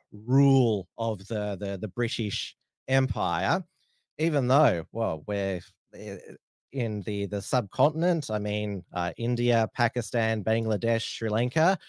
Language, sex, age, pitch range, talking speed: English, male, 30-49, 105-120 Hz, 115 wpm